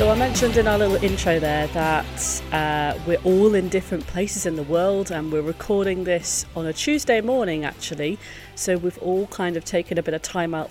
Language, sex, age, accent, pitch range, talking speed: English, female, 40-59, British, 155-185 Hz, 215 wpm